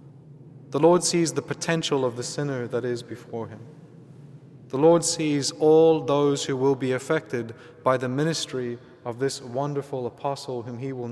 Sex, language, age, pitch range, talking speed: male, English, 30-49, 125-150 Hz, 165 wpm